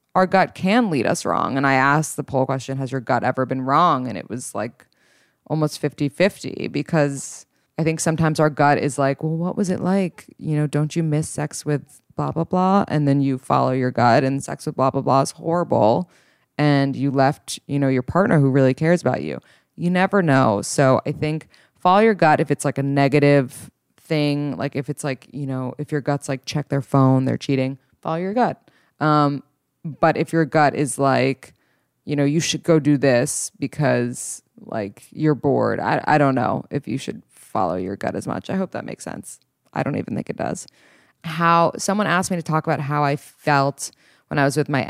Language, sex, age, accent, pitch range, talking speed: English, female, 20-39, American, 135-160 Hz, 220 wpm